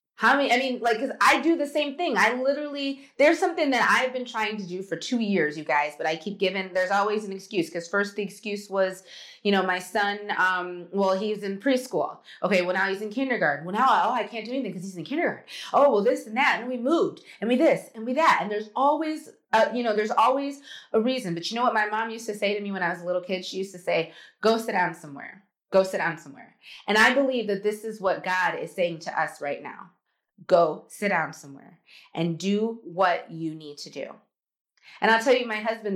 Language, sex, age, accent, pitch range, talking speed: English, female, 30-49, American, 180-230 Hz, 250 wpm